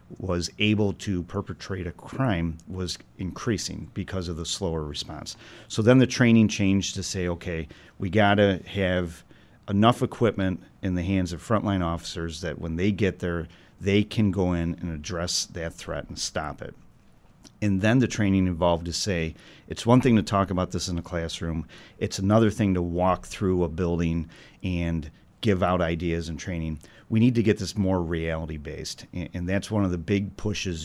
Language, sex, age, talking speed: English, male, 40-59, 185 wpm